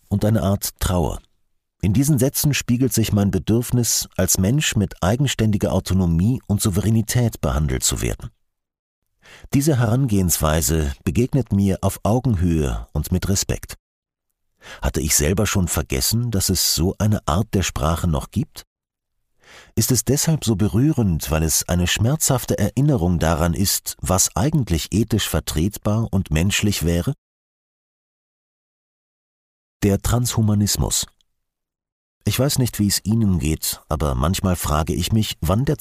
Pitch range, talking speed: 80-115 Hz, 130 wpm